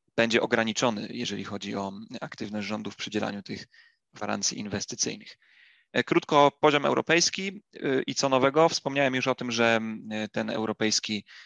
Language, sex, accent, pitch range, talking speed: Polish, male, native, 110-130 Hz, 130 wpm